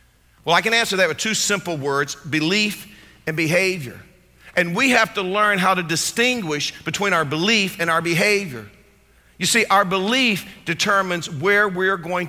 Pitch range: 150-190 Hz